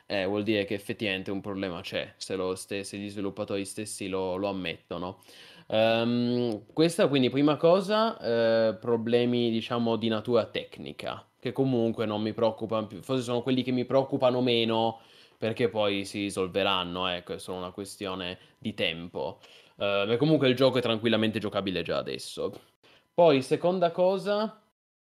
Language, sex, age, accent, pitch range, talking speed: Italian, male, 20-39, native, 100-125 Hz, 150 wpm